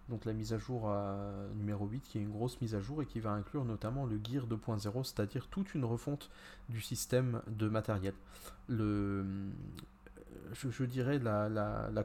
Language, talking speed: French, 185 wpm